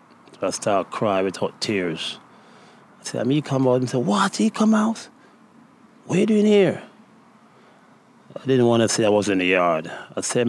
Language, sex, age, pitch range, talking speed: Swedish, male, 30-49, 100-135 Hz, 210 wpm